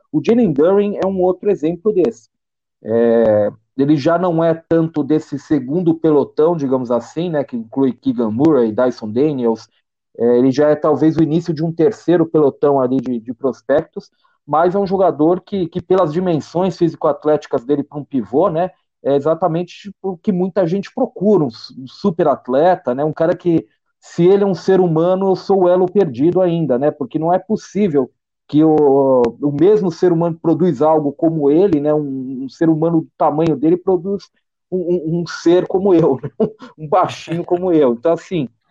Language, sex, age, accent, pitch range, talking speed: Portuguese, male, 40-59, Brazilian, 140-180 Hz, 185 wpm